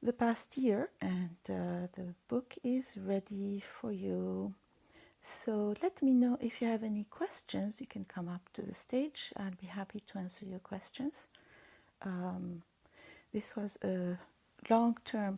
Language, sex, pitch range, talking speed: Arabic, female, 180-230 Hz, 155 wpm